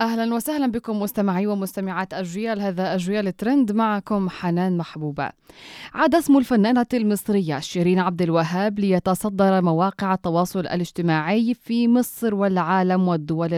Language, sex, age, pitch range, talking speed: Arabic, female, 20-39, 180-220 Hz, 120 wpm